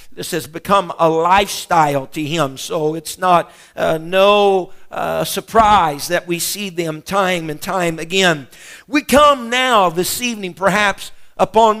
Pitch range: 165-205 Hz